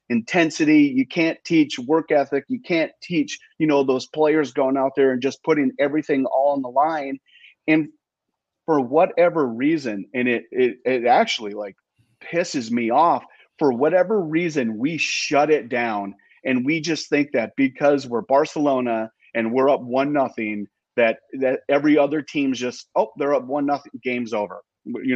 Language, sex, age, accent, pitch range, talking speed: English, male, 30-49, American, 125-160 Hz, 170 wpm